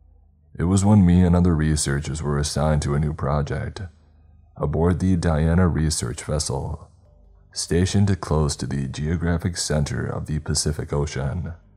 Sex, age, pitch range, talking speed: male, 20-39, 75-95 Hz, 145 wpm